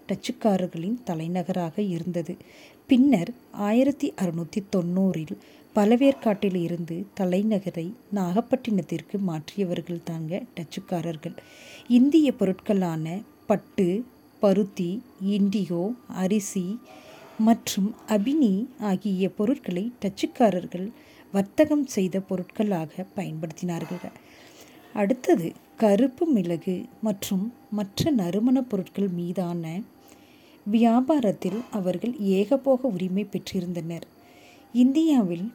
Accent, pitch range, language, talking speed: native, 180-240 Hz, Tamil, 70 wpm